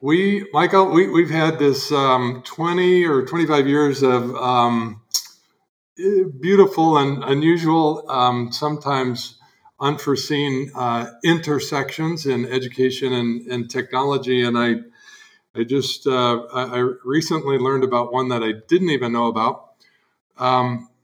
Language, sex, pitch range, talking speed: English, male, 125-150 Hz, 125 wpm